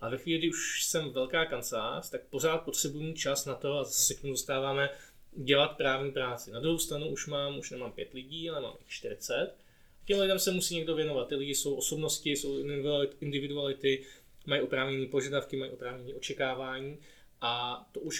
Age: 20-39